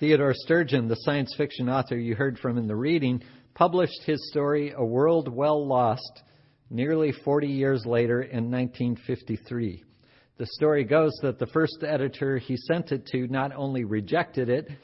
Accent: American